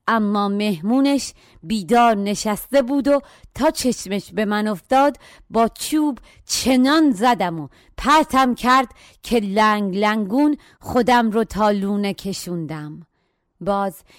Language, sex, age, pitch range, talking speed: Persian, female, 30-49, 180-225 Hz, 115 wpm